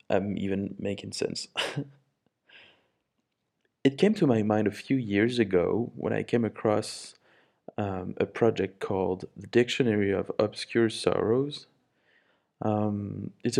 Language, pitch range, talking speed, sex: English, 105-125 Hz, 125 wpm, male